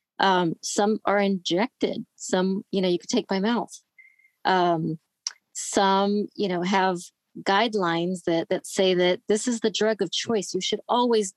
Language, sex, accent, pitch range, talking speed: English, female, American, 180-220 Hz, 165 wpm